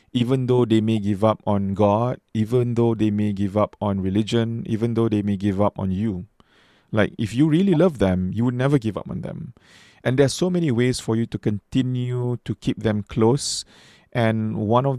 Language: English